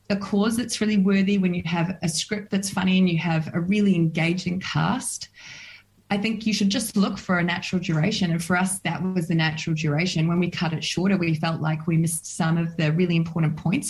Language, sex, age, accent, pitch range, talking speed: English, female, 30-49, Australian, 155-180 Hz, 230 wpm